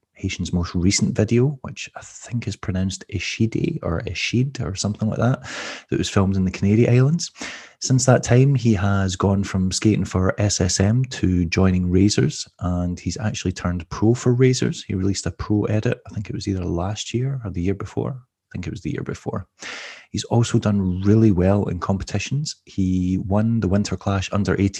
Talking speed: 190 wpm